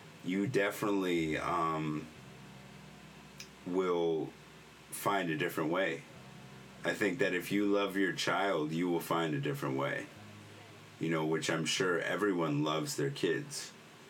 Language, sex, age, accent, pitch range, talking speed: English, male, 30-49, American, 80-110 Hz, 130 wpm